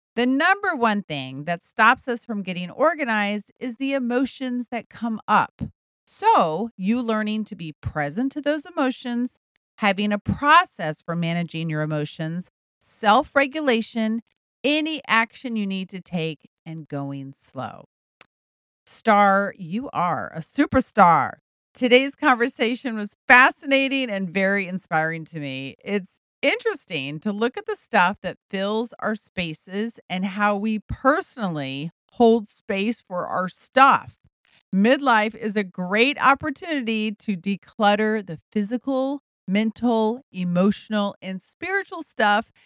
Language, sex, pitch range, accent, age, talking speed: English, female, 180-250 Hz, American, 40-59, 125 wpm